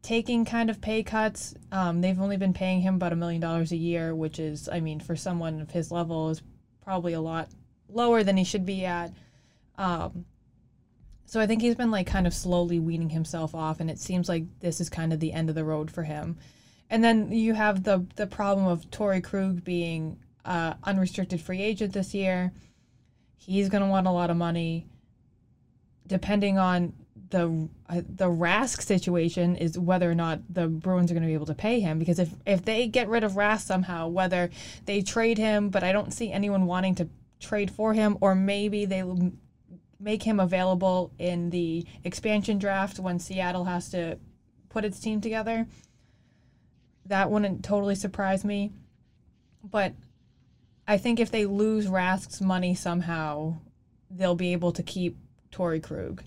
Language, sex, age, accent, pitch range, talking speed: English, female, 20-39, American, 165-200 Hz, 185 wpm